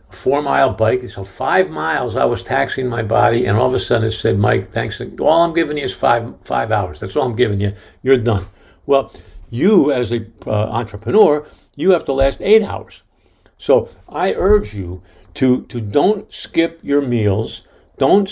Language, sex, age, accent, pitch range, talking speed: English, male, 50-69, American, 105-140 Hz, 185 wpm